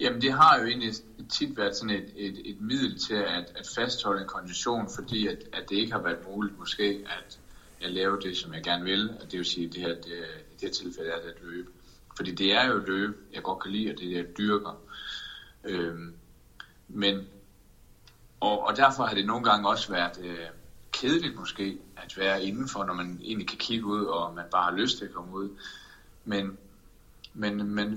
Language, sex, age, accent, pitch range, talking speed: Danish, male, 30-49, native, 90-110 Hz, 220 wpm